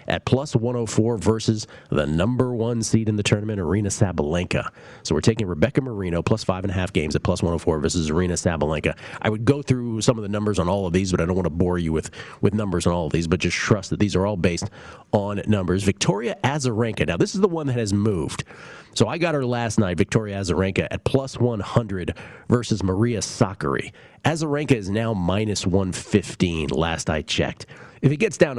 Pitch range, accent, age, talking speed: 90-120 Hz, American, 40-59, 215 wpm